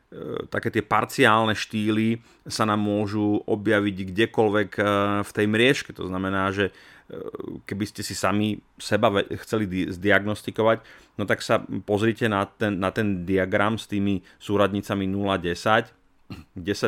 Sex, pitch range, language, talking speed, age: male, 100-115 Hz, Slovak, 125 wpm, 30-49